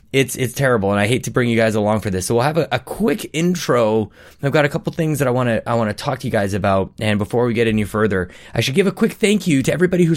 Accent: American